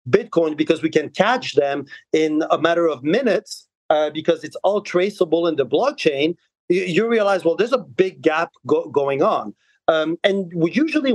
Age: 40-59